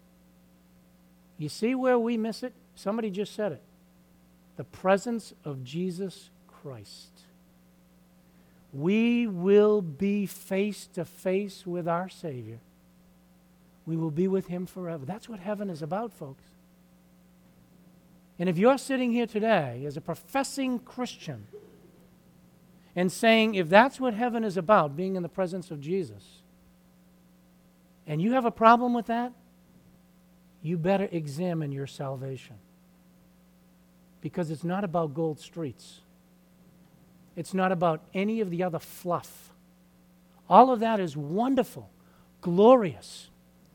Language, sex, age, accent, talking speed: English, male, 60-79, American, 125 wpm